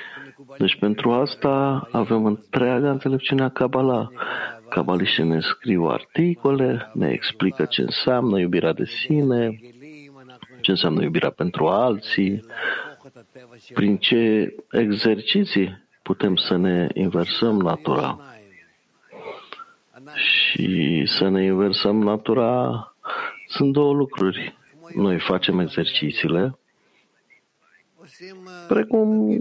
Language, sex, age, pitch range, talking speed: English, male, 50-69, 95-140 Hz, 90 wpm